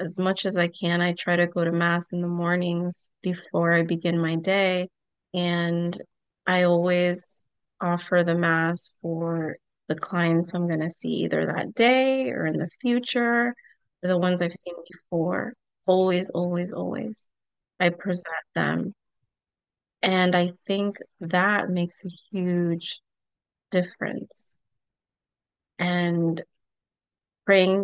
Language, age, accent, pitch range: English, 20-39, American, 170-195 Hz